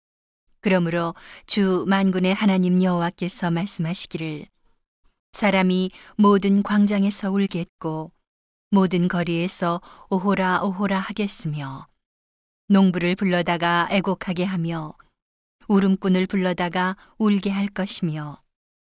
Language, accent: Korean, native